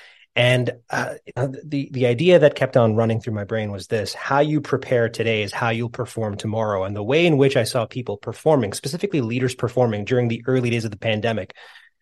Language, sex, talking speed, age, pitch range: English, male, 210 wpm, 30-49, 110-135 Hz